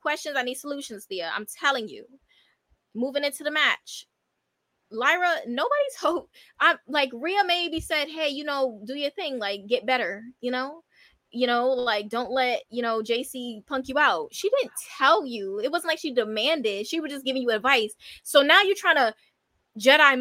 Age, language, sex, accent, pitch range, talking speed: 20-39, English, female, American, 240-325 Hz, 185 wpm